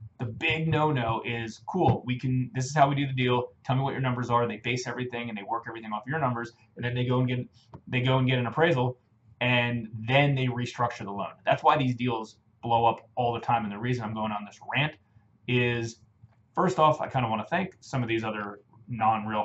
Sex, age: male, 20-39